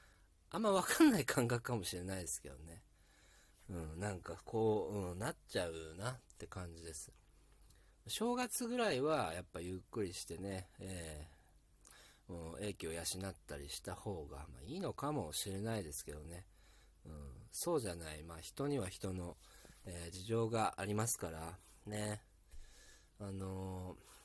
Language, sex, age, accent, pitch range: Japanese, male, 40-59, native, 85-120 Hz